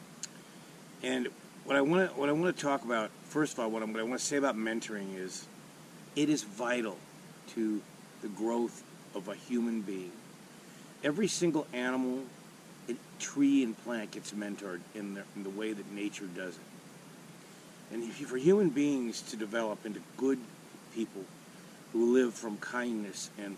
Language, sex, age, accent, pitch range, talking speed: English, male, 50-69, American, 105-135 Hz, 150 wpm